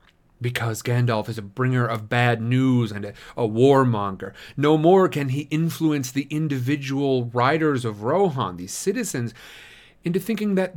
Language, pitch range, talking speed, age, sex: English, 120-165 Hz, 150 wpm, 40-59, male